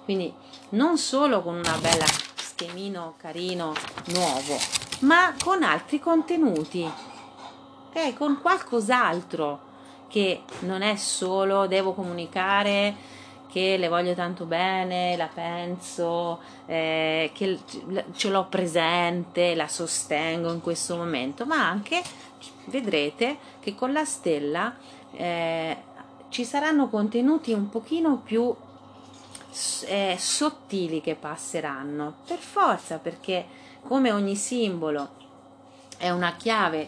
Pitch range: 170-255 Hz